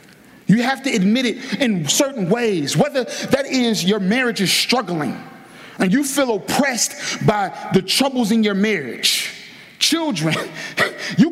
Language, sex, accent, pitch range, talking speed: English, male, American, 195-255 Hz, 145 wpm